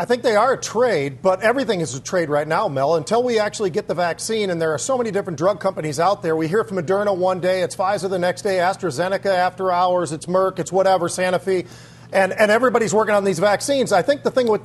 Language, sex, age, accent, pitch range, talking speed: English, male, 40-59, American, 185-230 Hz, 250 wpm